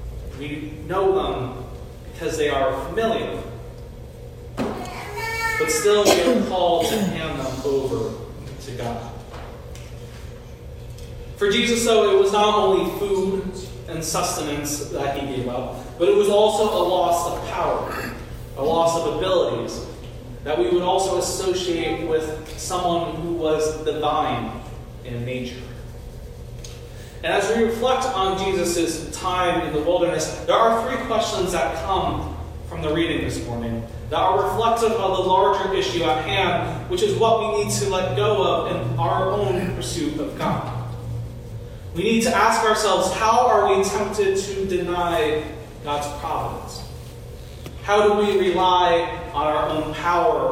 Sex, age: male, 30-49